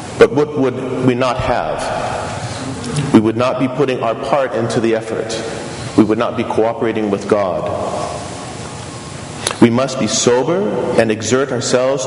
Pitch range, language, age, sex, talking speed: 110-135 Hz, English, 40-59, male, 150 wpm